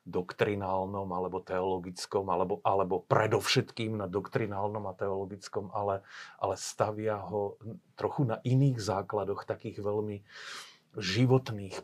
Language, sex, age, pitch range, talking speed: Slovak, male, 40-59, 100-115 Hz, 105 wpm